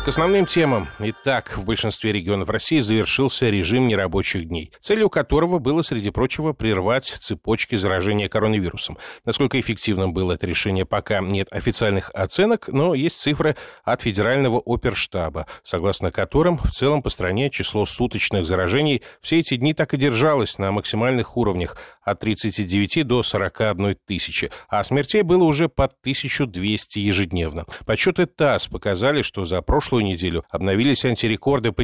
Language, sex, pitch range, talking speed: Russian, male, 100-140 Hz, 145 wpm